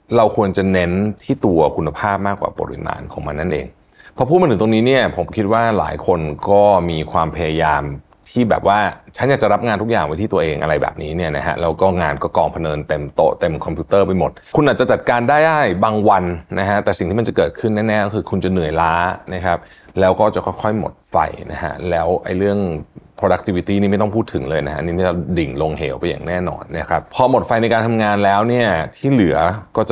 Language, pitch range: Thai, 85-110 Hz